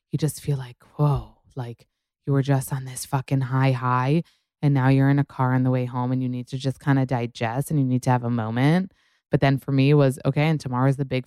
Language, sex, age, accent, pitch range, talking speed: English, female, 20-39, American, 130-150 Hz, 265 wpm